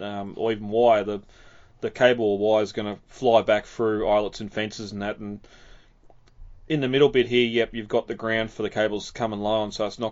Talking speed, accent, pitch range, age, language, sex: 245 wpm, Australian, 100-115 Hz, 20-39, English, male